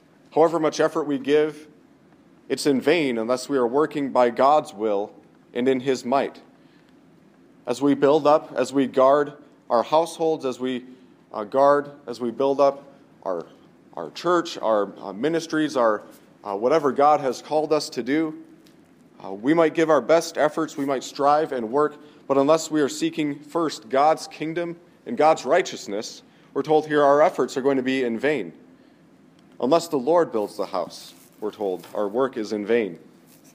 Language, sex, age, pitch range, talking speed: English, male, 40-59, 125-150 Hz, 175 wpm